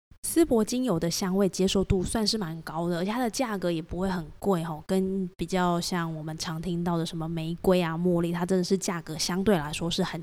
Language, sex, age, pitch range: Chinese, female, 20-39, 170-200 Hz